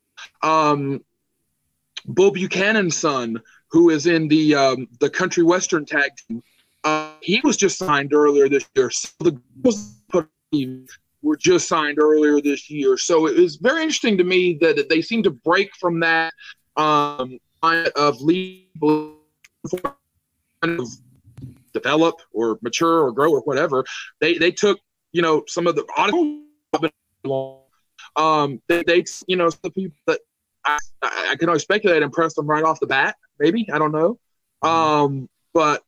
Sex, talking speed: male, 155 wpm